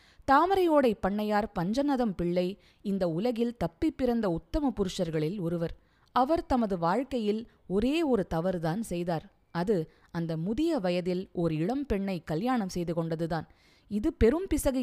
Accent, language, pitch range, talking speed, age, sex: native, Tamil, 175-250 Hz, 120 wpm, 20-39, female